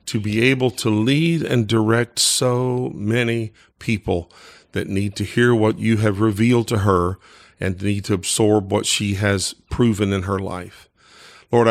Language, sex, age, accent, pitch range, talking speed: English, male, 50-69, American, 100-125 Hz, 165 wpm